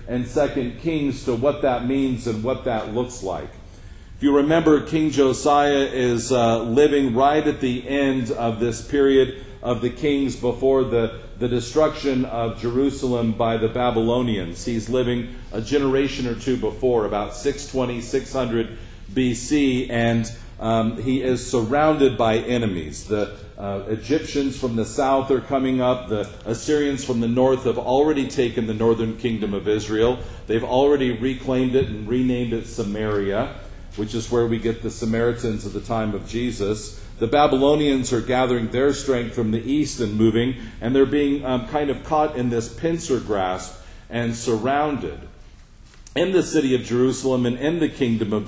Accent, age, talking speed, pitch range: American, 50-69, 165 wpm, 115-135 Hz